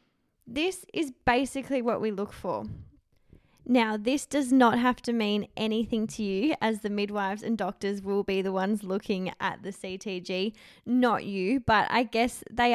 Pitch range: 195-235 Hz